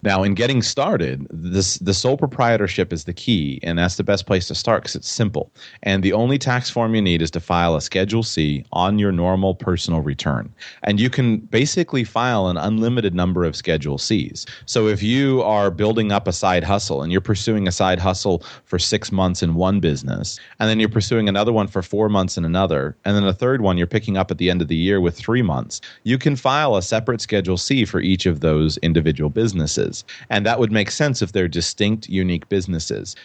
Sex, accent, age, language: male, American, 30-49, English